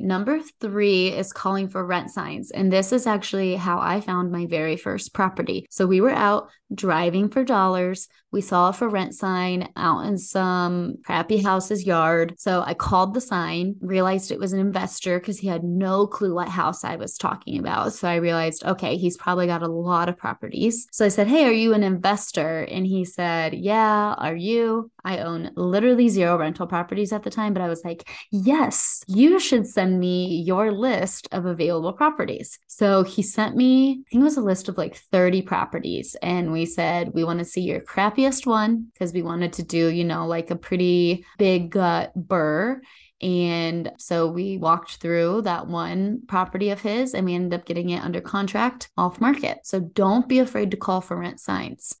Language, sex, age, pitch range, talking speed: English, female, 20-39, 175-210 Hz, 195 wpm